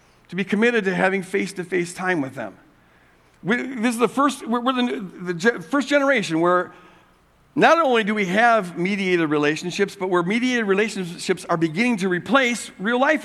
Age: 50-69